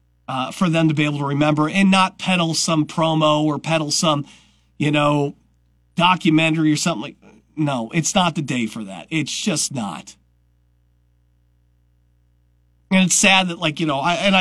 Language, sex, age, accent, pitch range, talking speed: English, male, 40-59, American, 110-160 Hz, 170 wpm